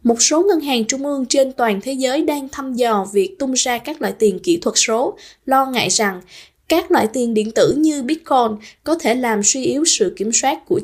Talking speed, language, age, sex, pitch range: 225 wpm, Vietnamese, 10-29, female, 225-295 Hz